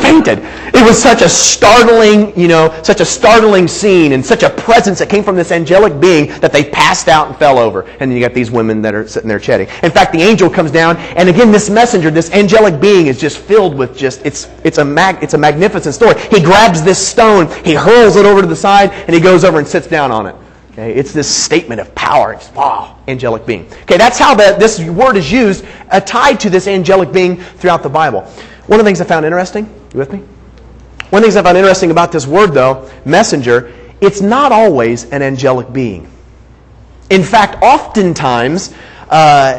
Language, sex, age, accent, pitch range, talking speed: English, male, 30-49, American, 150-205 Hz, 215 wpm